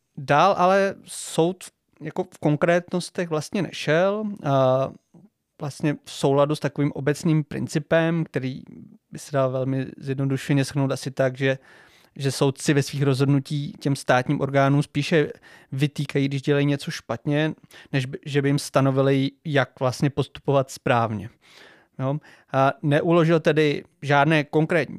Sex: male